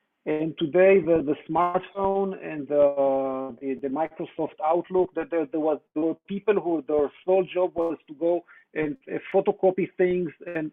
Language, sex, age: English, male, 50-69